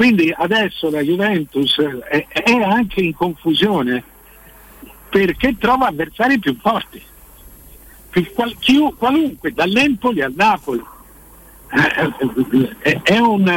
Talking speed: 85 wpm